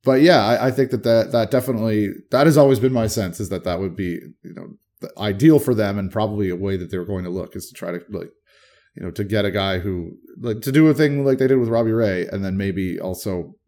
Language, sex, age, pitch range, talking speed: English, male, 30-49, 95-120 Hz, 270 wpm